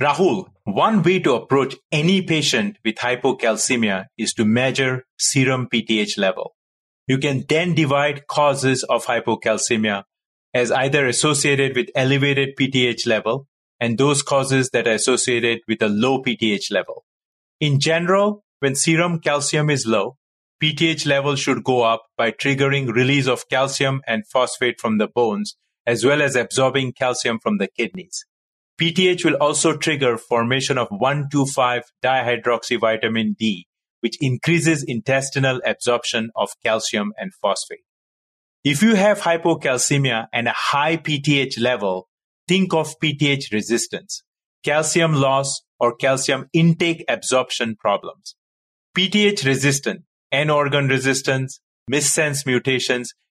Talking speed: 130 wpm